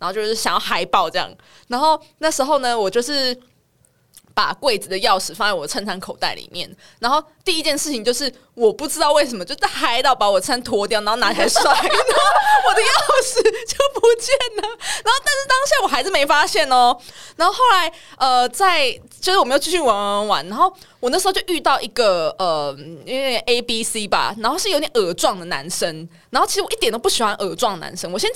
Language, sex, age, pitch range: Chinese, female, 20-39, 225-370 Hz